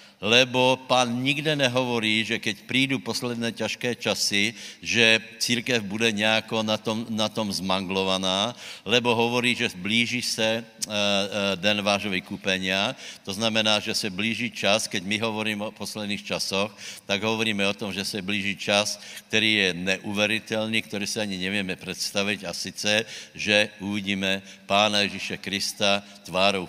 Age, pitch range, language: 70-89, 100-120 Hz, Slovak